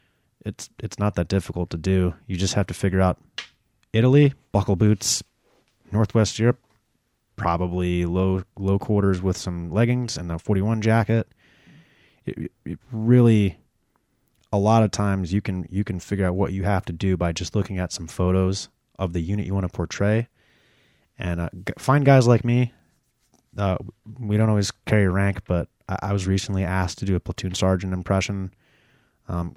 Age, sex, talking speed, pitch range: 20-39, male, 175 wpm, 90-110 Hz